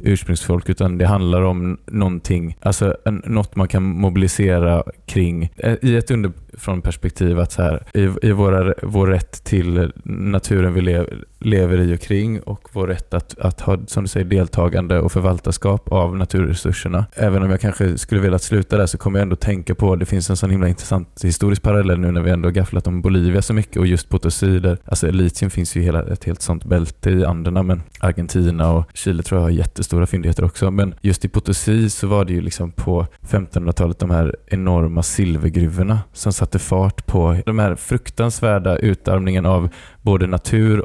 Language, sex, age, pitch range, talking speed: Swedish, male, 20-39, 85-100 Hz, 190 wpm